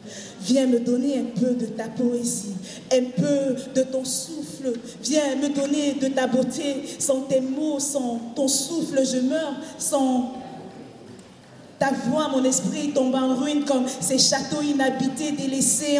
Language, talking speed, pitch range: French, 150 wpm, 245-280 Hz